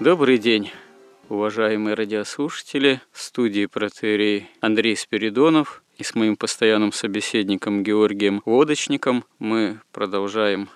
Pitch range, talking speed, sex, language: 100-120 Hz, 100 wpm, male, Russian